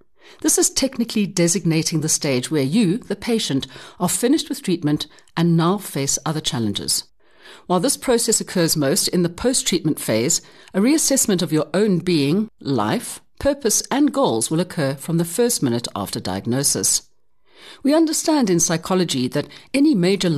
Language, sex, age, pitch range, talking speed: English, female, 60-79, 150-215 Hz, 155 wpm